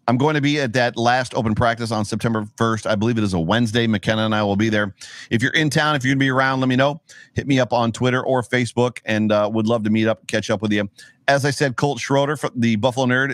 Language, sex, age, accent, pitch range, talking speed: English, male, 40-59, American, 100-125 Hz, 290 wpm